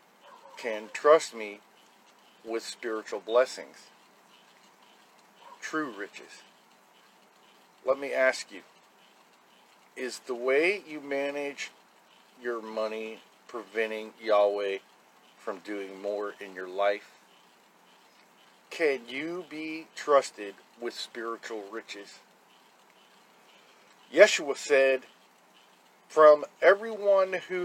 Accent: American